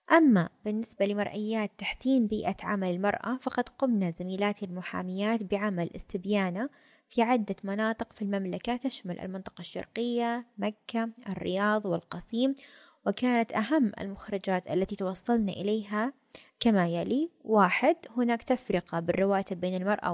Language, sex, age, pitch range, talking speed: Arabic, female, 20-39, 190-235 Hz, 115 wpm